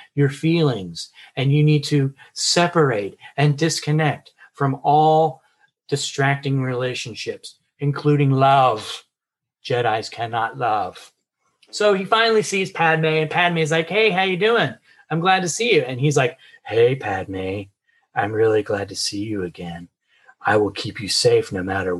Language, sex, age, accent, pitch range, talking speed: English, male, 30-49, American, 135-175 Hz, 150 wpm